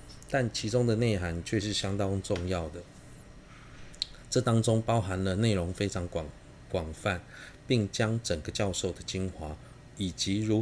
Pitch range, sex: 90-110 Hz, male